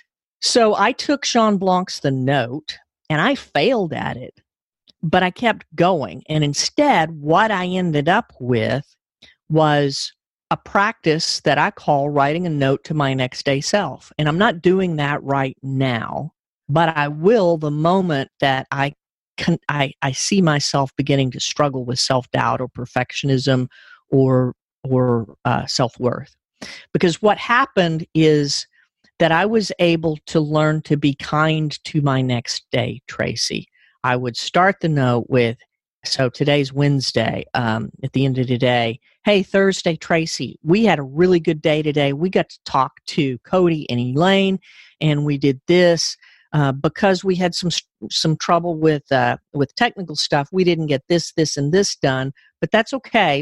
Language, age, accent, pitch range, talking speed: English, 50-69, American, 135-180 Hz, 165 wpm